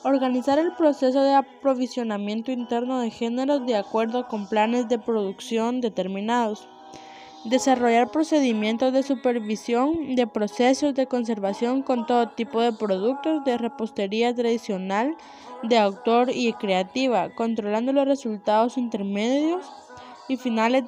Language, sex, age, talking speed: Spanish, female, 20-39, 120 wpm